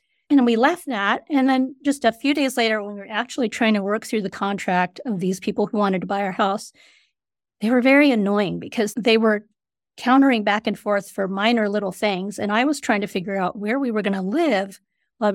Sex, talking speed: female, 230 wpm